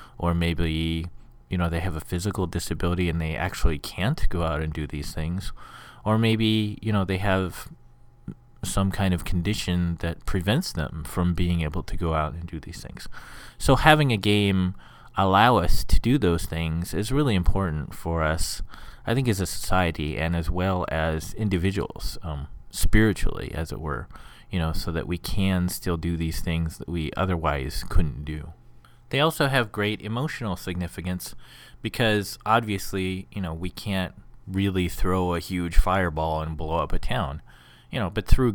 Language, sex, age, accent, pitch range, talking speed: English, male, 30-49, American, 80-100 Hz, 175 wpm